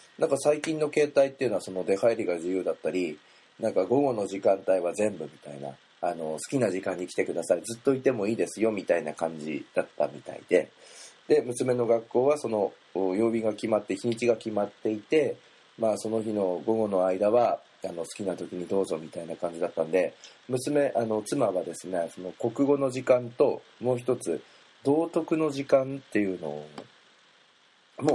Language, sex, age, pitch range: Japanese, male, 40-59, 90-135 Hz